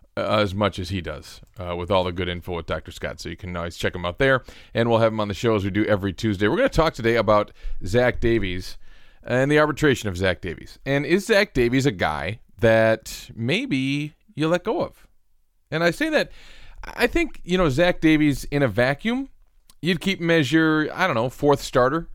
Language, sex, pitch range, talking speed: English, male, 105-140 Hz, 220 wpm